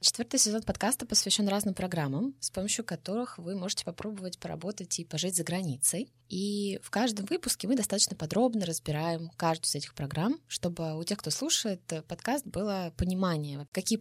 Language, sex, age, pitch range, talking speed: Russian, female, 20-39, 160-205 Hz, 165 wpm